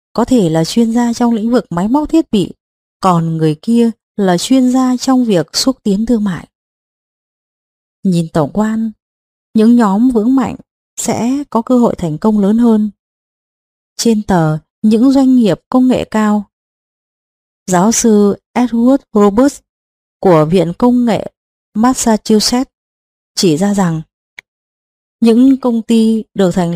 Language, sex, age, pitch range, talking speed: Vietnamese, female, 20-39, 190-245 Hz, 145 wpm